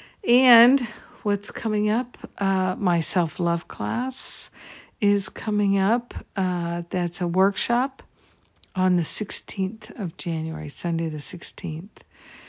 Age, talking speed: 50-69, 110 wpm